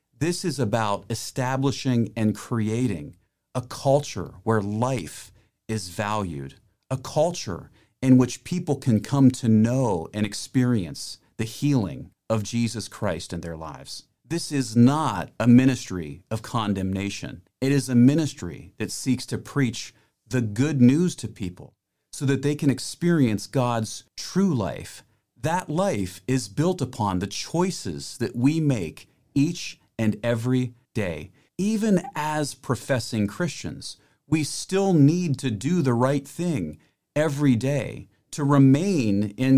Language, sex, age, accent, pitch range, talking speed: English, male, 40-59, American, 105-140 Hz, 140 wpm